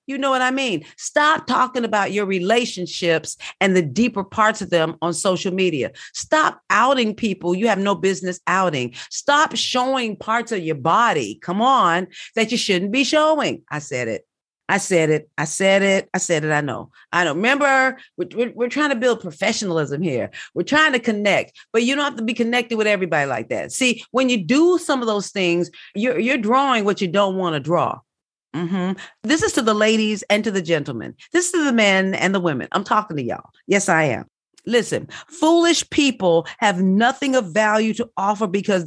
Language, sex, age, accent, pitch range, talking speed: English, female, 40-59, American, 185-245 Hz, 200 wpm